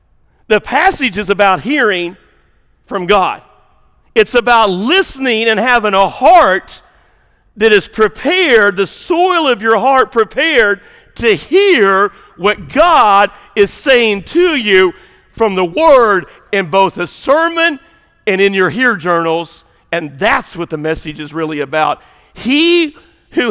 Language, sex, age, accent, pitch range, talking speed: English, male, 50-69, American, 170-240 Hz, 135 wpm